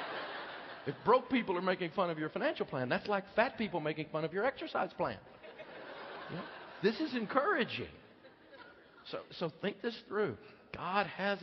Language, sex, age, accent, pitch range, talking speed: English, male, 50-69, American, 120-170 Hz, 160 wpm